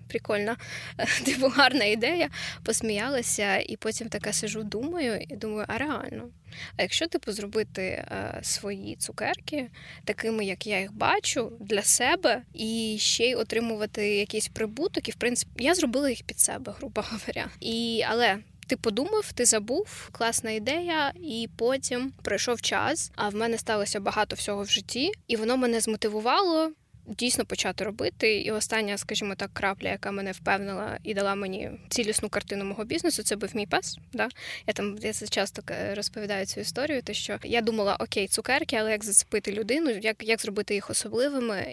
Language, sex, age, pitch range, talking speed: Ukrainian, female, 10-29, 205-245 Hz, 165 wpm